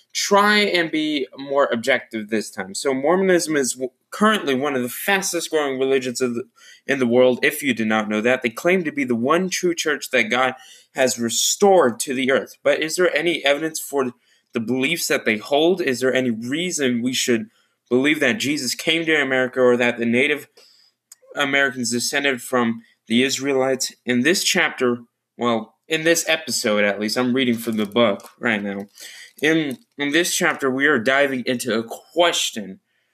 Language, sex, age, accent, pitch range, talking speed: English, male, 20-39, American, 115-150 Hz, 180 wpm